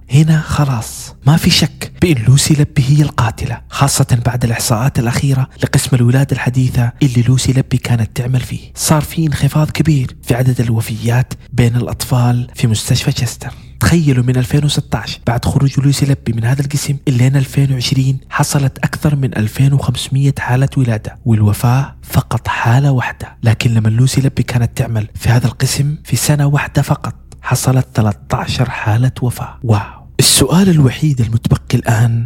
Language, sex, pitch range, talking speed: Arabic, male, 120-140 Hz, 145 wpm